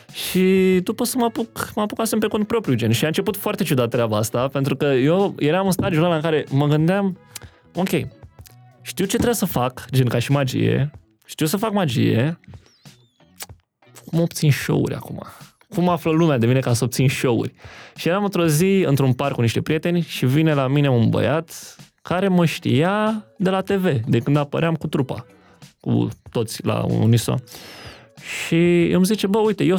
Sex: male